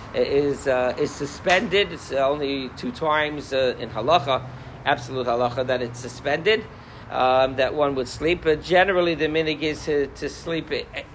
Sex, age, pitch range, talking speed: male, 50-69, 125-165 Hz, 150 wpm